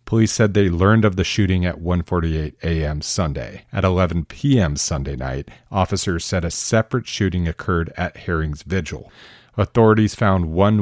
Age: 40-59